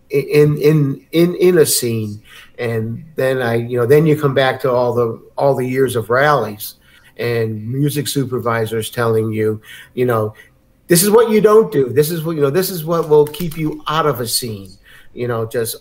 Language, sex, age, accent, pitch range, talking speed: English, male, 50-69, American, 115-155 Hz, 205 wpm